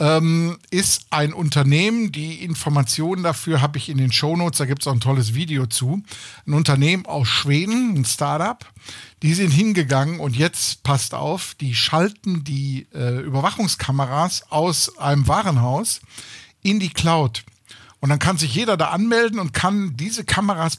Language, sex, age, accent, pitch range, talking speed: German, male, 50-69, German, 135-180 Hz, 155 wpm